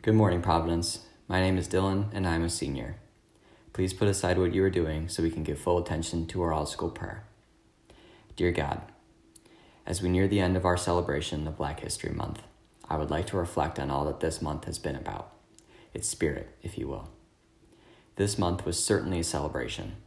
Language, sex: English, male